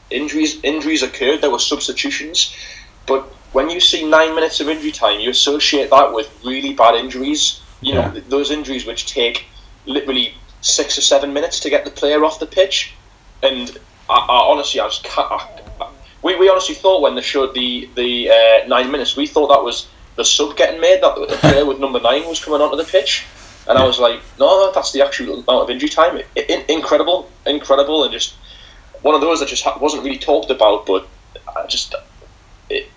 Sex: male